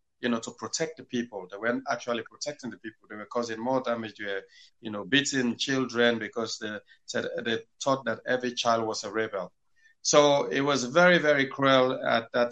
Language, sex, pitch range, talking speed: English, male, 110-125 Hz, 195 wpm